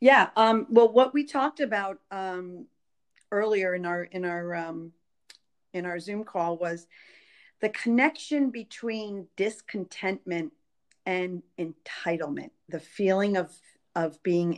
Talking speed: 120 wpm